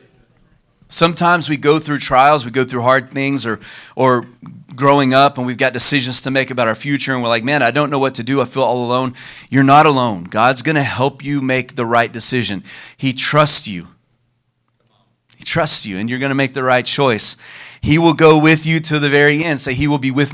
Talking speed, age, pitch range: 230 wpm, 30-49, 115-145 Hz